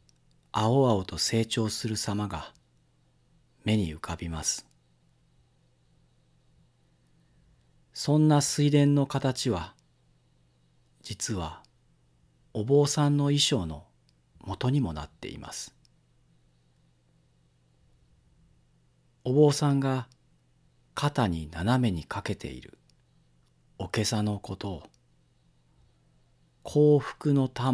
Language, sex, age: Japanese, male, 40-59